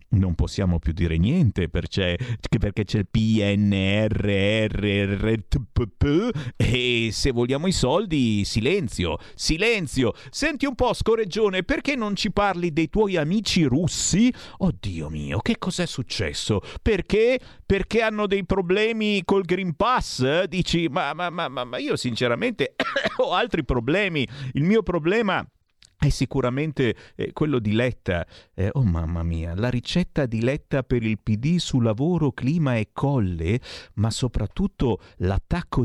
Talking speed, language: 125 wpm, Italian